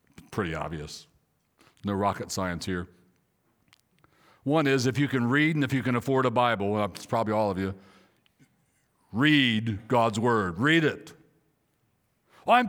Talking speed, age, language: 140 wpm, 60-79, English